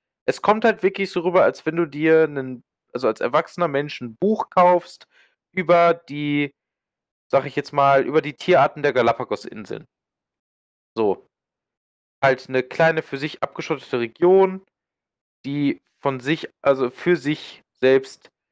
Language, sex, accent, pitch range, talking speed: German, male, German, 120-160 Hz, 145 wpm